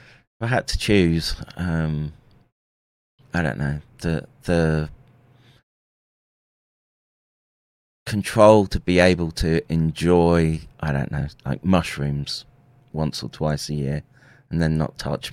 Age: 30-49